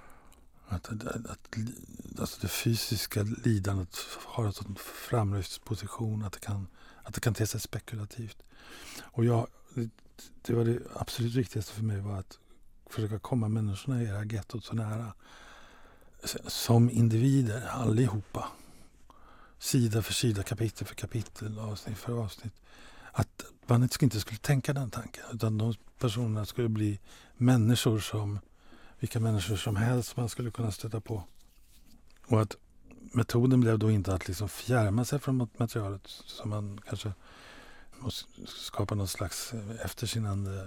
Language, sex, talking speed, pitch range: Swedish, male, 140 wpm, 105-120 Hz